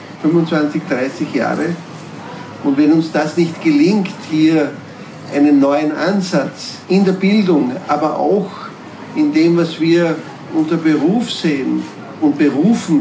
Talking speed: 125 wpm